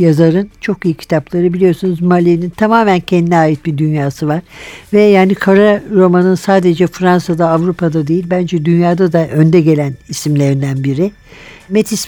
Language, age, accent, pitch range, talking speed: Turkish, 60-79, native, 155-185 Hz, 140 wpm